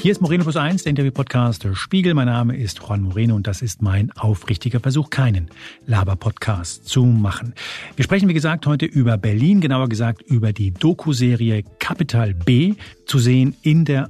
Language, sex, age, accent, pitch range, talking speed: German, male, 50-69, German, 115-150 Hz, 180 wpm